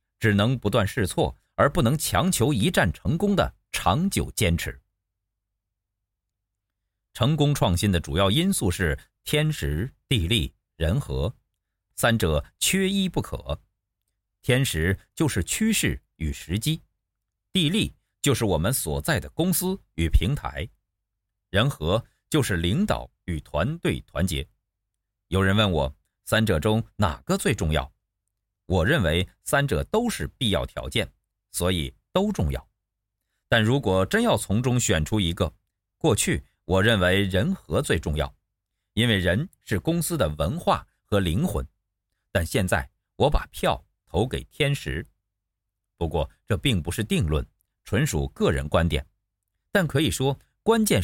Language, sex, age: Chinese, male, 50-69